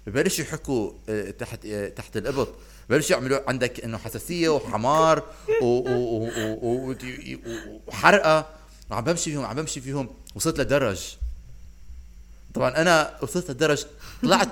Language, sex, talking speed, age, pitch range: Arabic, male, 105 wpm, 30-49, 120-180 Hz